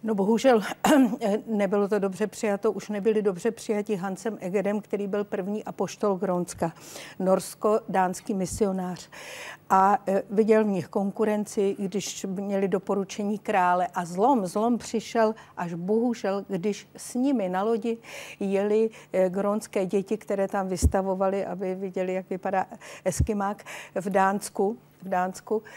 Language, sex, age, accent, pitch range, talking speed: Czech, female, 50-69, native, 190-215 Hz, 125 wpm